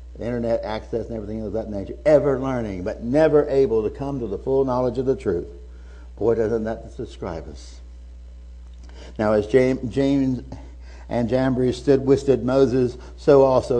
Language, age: English, 60-79